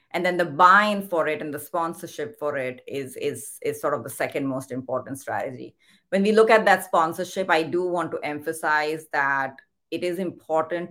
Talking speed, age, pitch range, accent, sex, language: 200 wpm, 30-49, 150-180 Hz, Indian, female, English